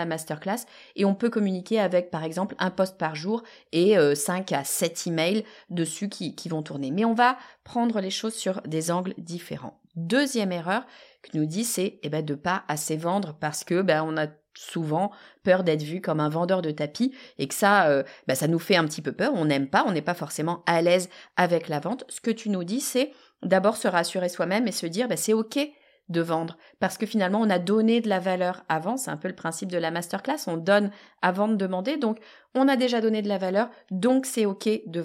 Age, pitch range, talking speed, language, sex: 30-49, 165-220 Hz, 235 wpm, French, female